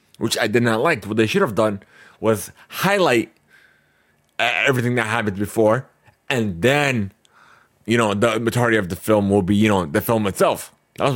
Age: 30-49